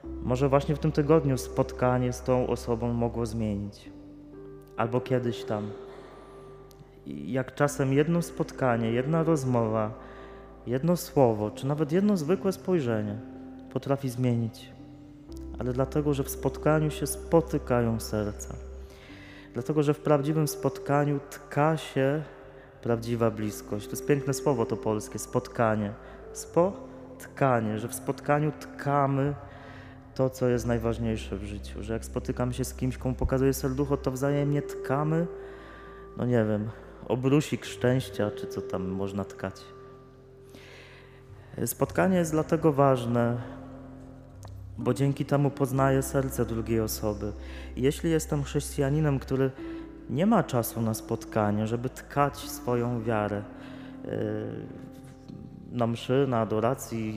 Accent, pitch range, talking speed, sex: native, 115-140 Hz, 120 wpm, male